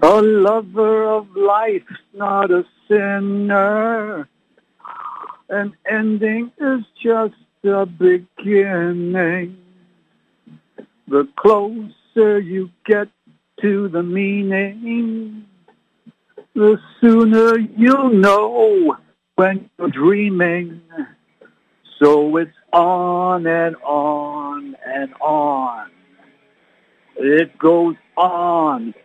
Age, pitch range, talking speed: 60-79, 170-220 Hz, 75 wpm